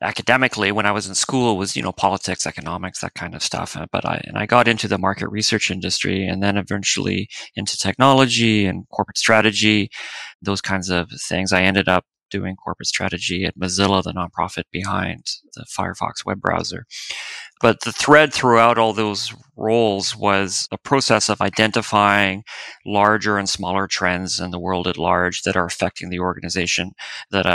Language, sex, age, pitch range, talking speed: English, male, 30-49, 95-110 Hz, 175 wpm